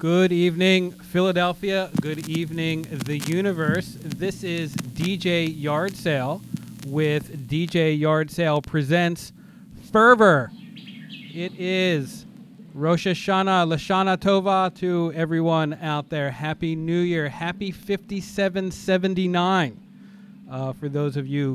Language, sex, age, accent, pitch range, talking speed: English, male, 40-59, American, 155-190 Hz, 105 wpm